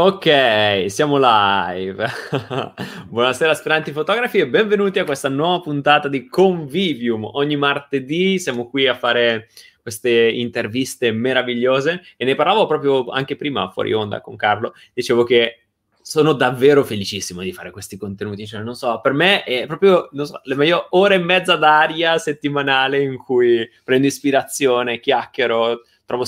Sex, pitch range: male, 115-155 Hz